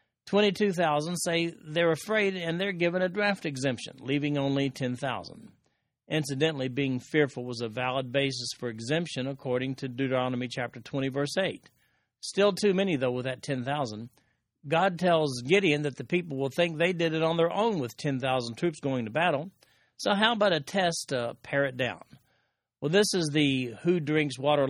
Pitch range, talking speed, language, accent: 130-170 Hz, 175 wpm, English, American